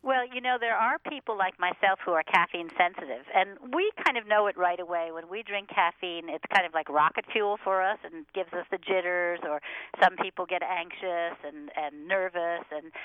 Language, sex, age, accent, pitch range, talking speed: English, female, 50-69, American, 170-220 Hz, 215 wpm